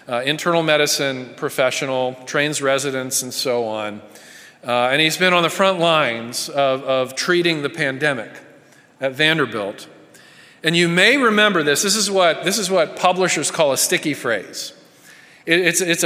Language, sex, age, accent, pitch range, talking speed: English, male, 40-59, American, 150-190 Hz, 160 wpm